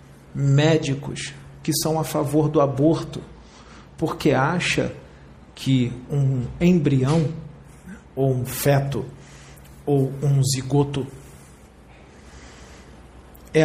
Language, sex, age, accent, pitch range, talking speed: Portuguese, male, 40-59, Brazilian, 100-155 Hz, 85 wpm